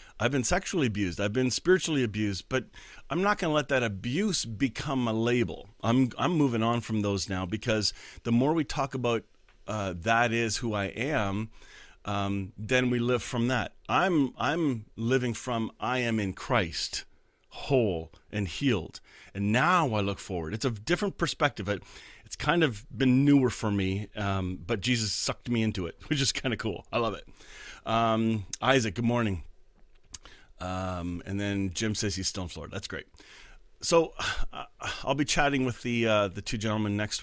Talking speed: 180 wpm